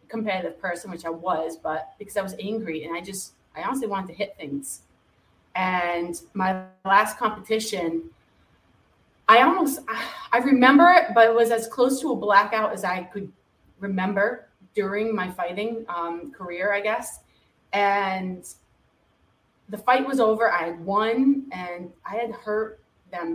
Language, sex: English, female